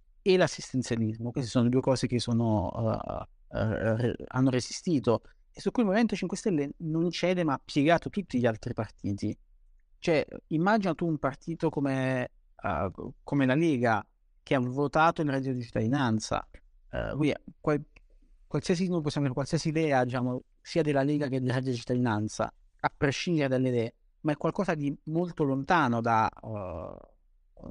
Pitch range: 120-155 Hz